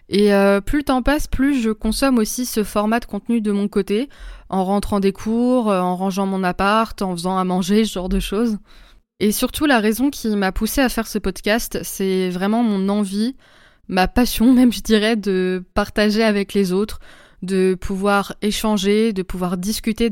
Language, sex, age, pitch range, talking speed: French, female, 20-39, 190-220 Hz, 190 wpm